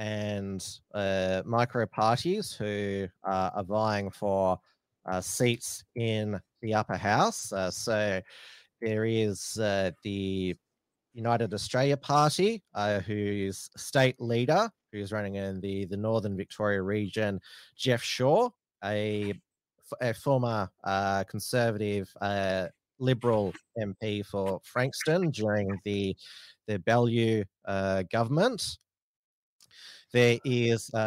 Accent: Australian